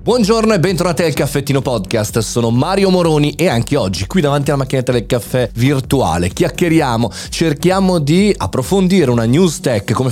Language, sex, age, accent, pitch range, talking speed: Italian, male, 30-49, native, 110-150 Hz, 160 wpm